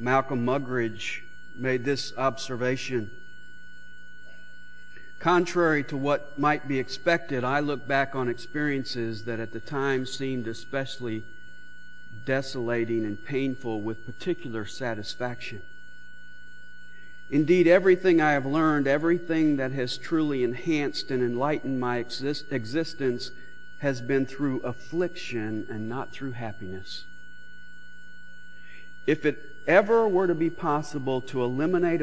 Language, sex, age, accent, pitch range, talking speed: English, male, 50-69, American, 125-180 Hz, 110 wpm